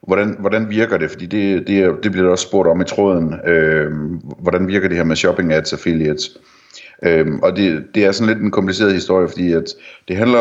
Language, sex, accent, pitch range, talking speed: Danish, male, native, 80-95 Hz, 220 wpm